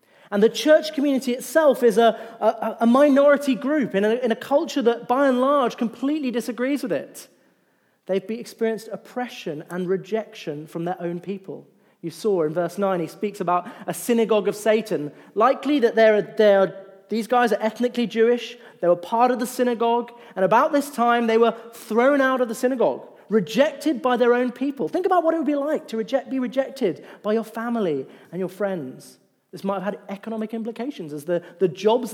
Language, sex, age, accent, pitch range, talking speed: English, male, 30-49, British, 195-245 Hz, 185 wpm